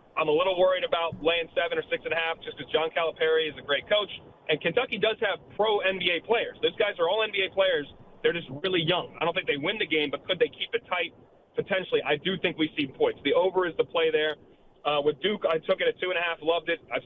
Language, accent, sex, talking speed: English, American, male, 245 wpm